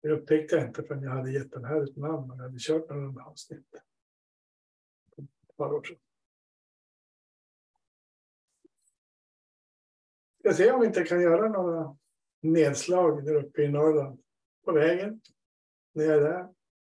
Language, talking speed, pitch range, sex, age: Swedish, 130 wpm, 145-180 Hz, male, 60-79